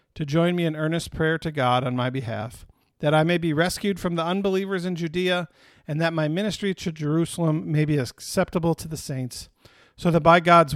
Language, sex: English, male